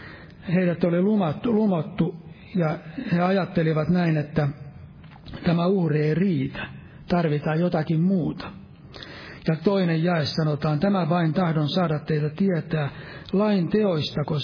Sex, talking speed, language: male, 120 wpm, Finnish